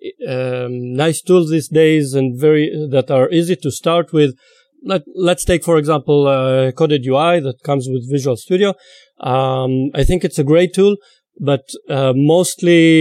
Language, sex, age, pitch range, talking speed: English, male, 40-59, 135-170 Hz, 170 wpm